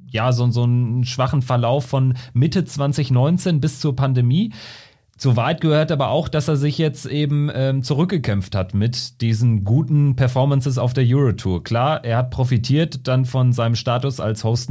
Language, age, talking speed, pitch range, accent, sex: German, 40-59, 170 wpm, 110-135 Hz, German, male